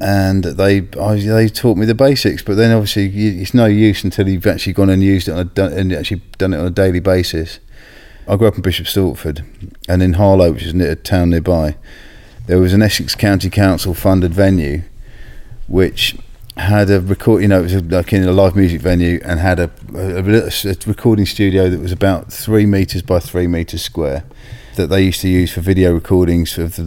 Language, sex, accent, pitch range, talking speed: English, male, British, 90-100 Hz, 210 wpm